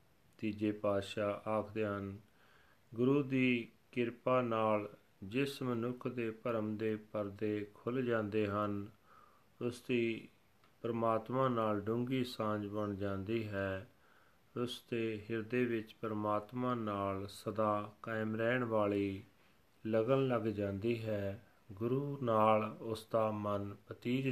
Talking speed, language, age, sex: 115 wpm, Punjabi, 40-59, male